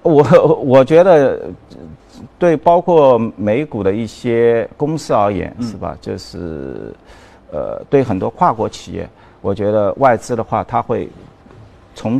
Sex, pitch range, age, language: male, 95-130 Hz, 50-69, Chinese